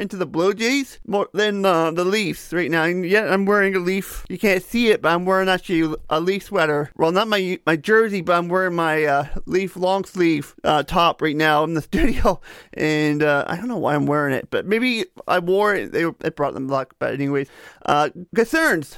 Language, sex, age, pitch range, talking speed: English, male, 30-49, 160-195 Hz, 220 wpm